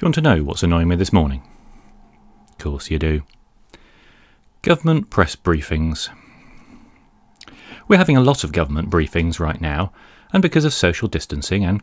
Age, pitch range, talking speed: 30-49, 80-115 Hz, 155 wpm